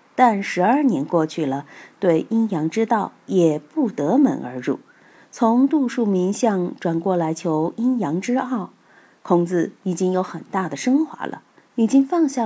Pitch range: 170-250 Hz